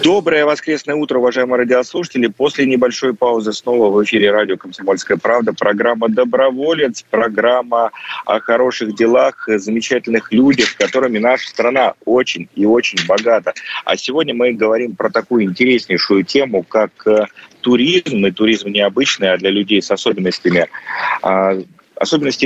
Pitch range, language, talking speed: 105-130 Hz, Russian, 130 wpm